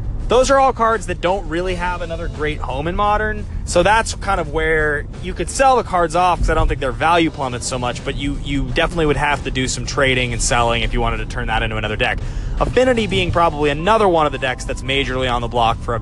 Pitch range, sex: 120-170 Hz, male